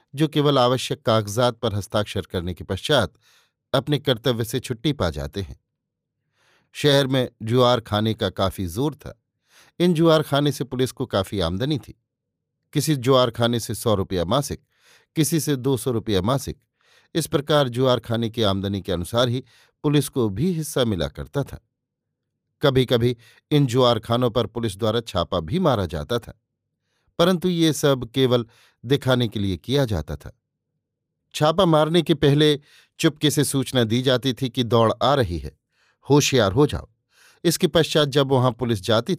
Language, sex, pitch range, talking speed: Hindi, male, 110-145 Hz, 165 wpm